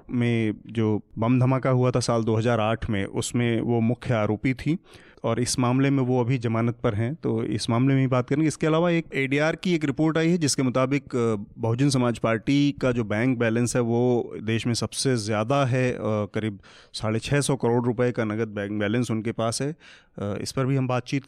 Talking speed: 205 wpm